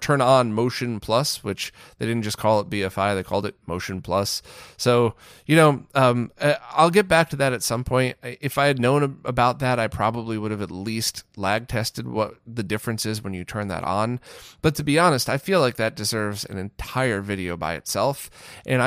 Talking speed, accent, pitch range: 210 wpm, American, 100-125 Hz